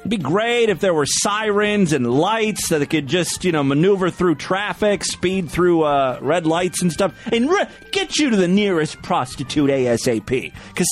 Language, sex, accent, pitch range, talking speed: English, male, American, 145-225 Hz, 190 wpm